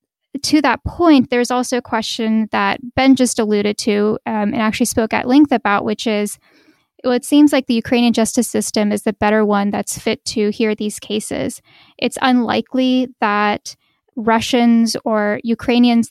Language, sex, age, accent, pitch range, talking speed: English, female, 10-29, American, 215-245 Hz, 170 wpm